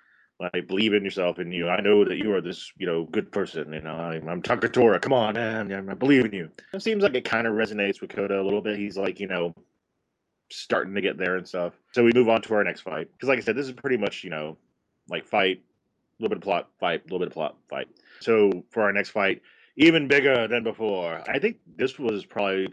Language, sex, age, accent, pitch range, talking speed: English, male, 30-49, American, 90-115 Hz, 260 wpm